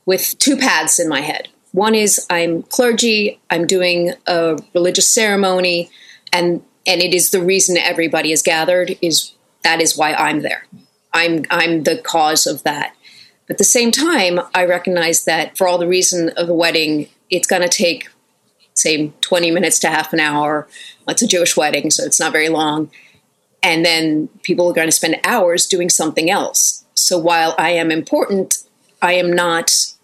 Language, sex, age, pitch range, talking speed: English, female, 30-49, 160-185 Hz, 180 wpm